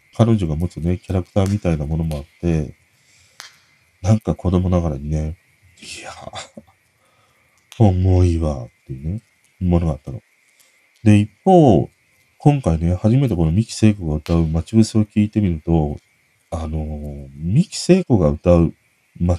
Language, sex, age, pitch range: Japanese, male, 40-59, 85-130 Hz